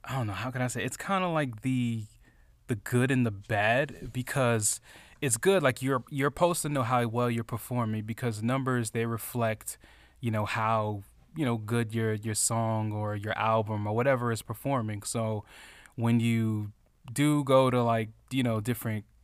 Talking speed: 185 wpm